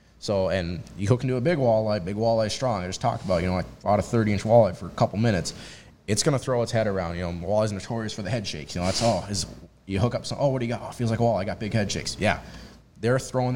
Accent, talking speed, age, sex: American, 310 wpm, 20-39, male